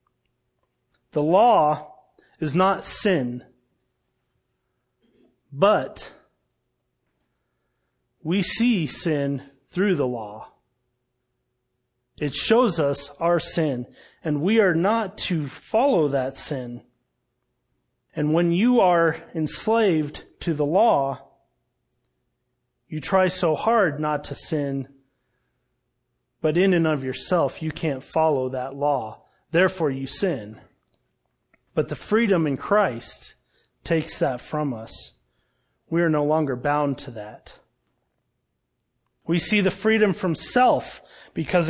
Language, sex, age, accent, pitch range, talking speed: English, male, 30-49, American, 140-190 Hz, 110 wpm